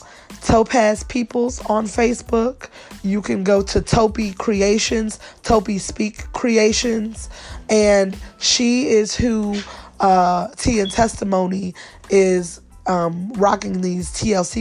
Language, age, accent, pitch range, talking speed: English, 20-39, American, 195-230 Hz, 105 wpm